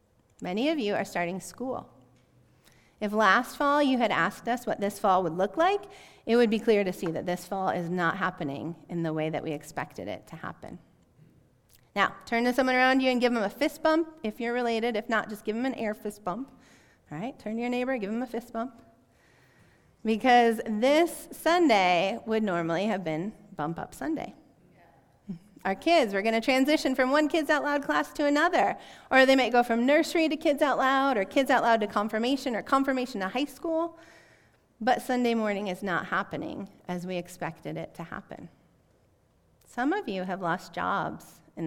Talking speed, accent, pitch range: 200 wpm, American, 180-265 Hz